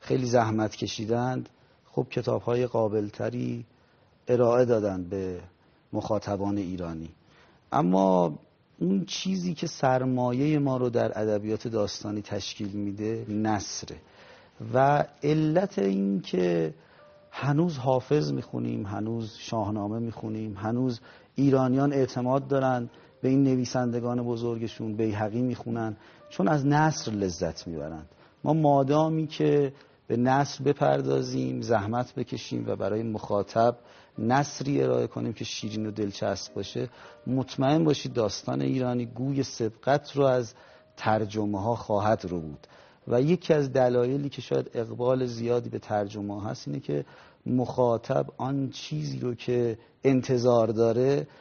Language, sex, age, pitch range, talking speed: Persian, male, 40-59, 105-130 Hz, 120 wpm